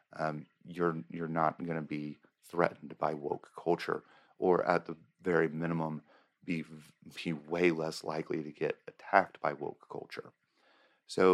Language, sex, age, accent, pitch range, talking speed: English, male, 40-59, American, 80-90 Hz, 150 wpm